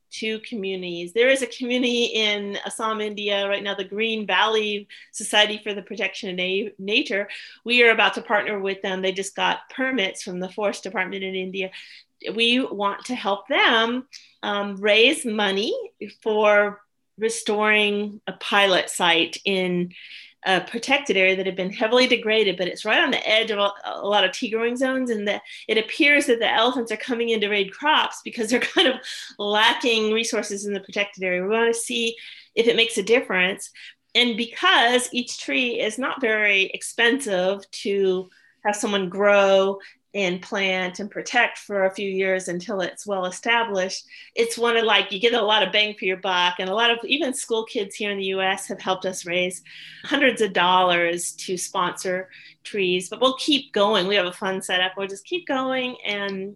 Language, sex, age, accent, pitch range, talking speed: English, female, 40-59, American, 195-235 Hz, 190 wpm